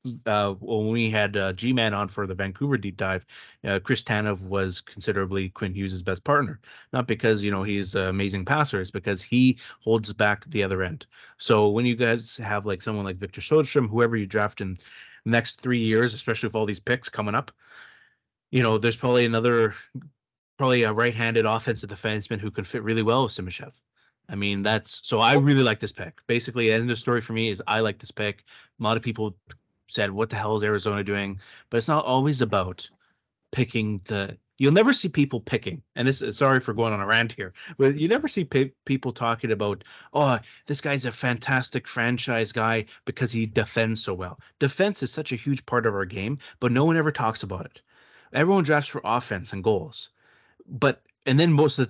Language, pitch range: English, 105-130 Hz